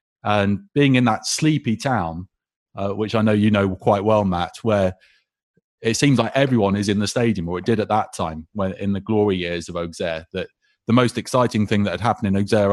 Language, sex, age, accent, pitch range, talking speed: English, male, 30-49, British, 95-115 Hz, 220 wpm